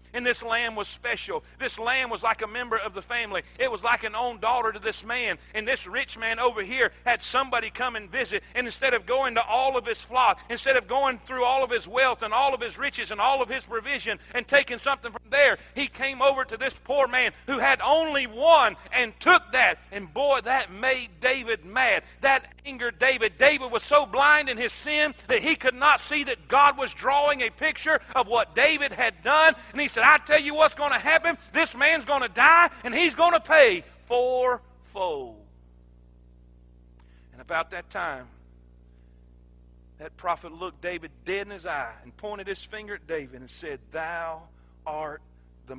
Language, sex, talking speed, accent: English, male, 205 wpm, American